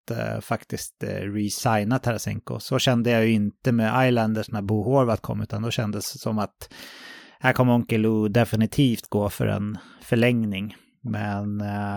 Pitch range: 110-135 Hz